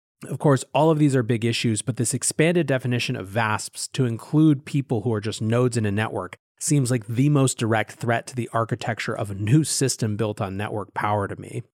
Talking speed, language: 220 wpm, English